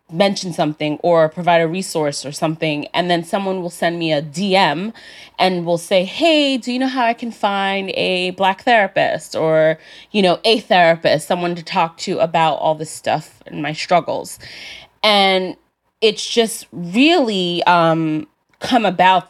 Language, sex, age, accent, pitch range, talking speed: English, female, 20-39, American, 160-205 Hz, 165 wpm